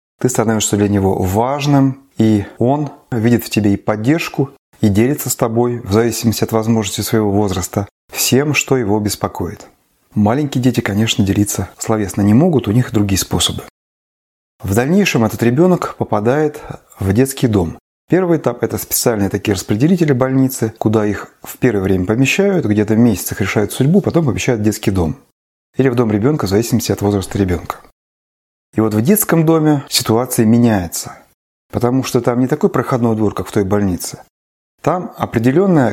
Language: Russian